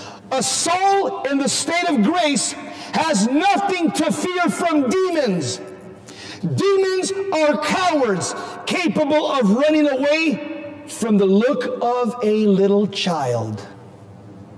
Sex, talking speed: male, 110 wpm